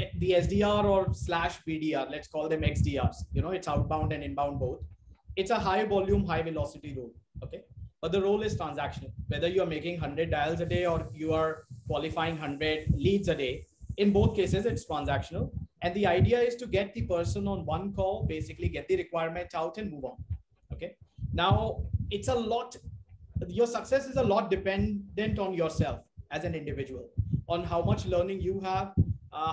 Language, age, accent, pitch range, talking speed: English, 30-49, Indian, 135-190 Hz, 185 wpm